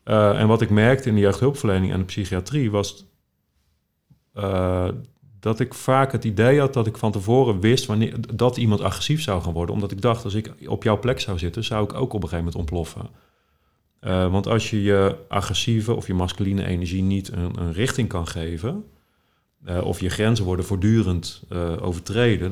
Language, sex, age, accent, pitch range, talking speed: Dutch, male, 40-59, Dutch, 85-110 Hz, 190 wpm